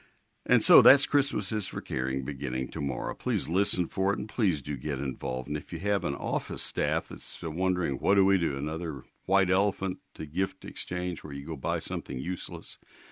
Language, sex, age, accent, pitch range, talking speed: English, male, 60-79, American, 80-110 Hz, 195 wpm